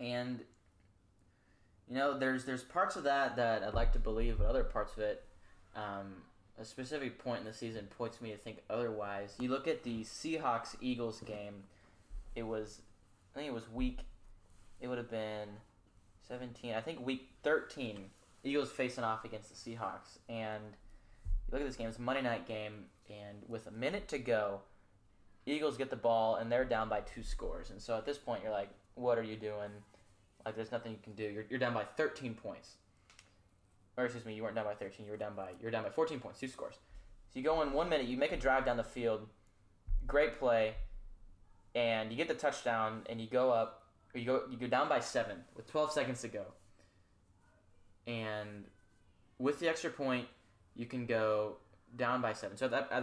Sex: male